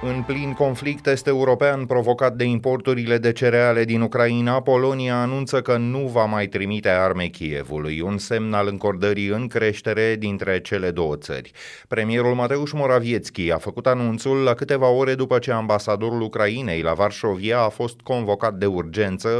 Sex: male